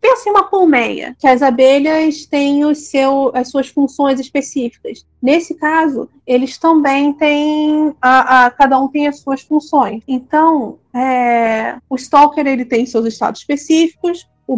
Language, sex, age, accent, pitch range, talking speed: Portuguese, female, 30-49, Brazilian, 245-290 Hz, 150 wpm